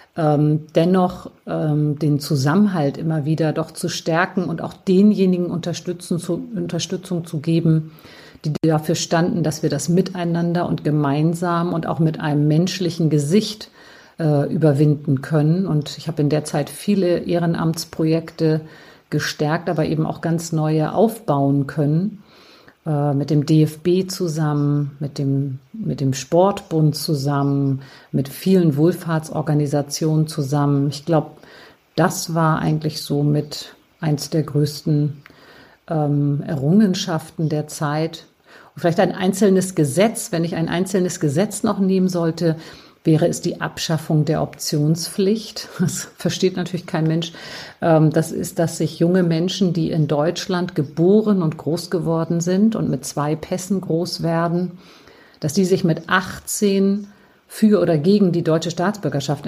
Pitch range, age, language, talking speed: 150-180 Hz, 50-69, German, 130 wpm